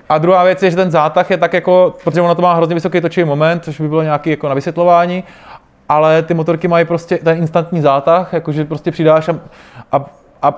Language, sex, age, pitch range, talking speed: Czech, male, 20-39, 150-170 Hz, 215 wpm